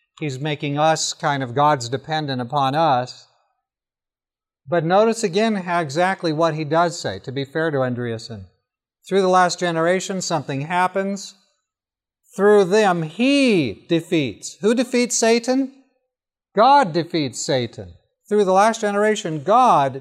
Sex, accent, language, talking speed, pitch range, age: male, American, English, 130 wpm, 135-180 Hz, 50-69